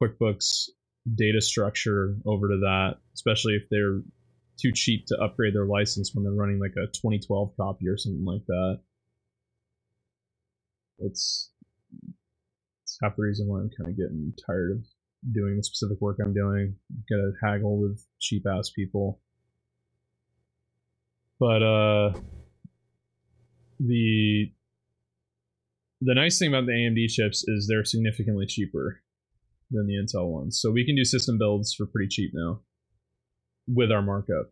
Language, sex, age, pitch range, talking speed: English, male, 20-39, 100-115 Hz, 140 wpm